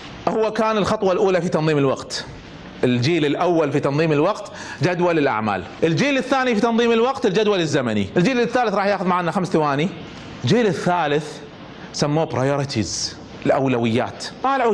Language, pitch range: Arabic, 150-215 Hz